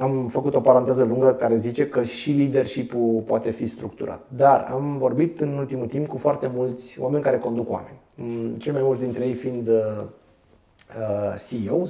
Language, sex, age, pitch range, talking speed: Romanian, male, 30-49, 115-155 Hz, 165 wpm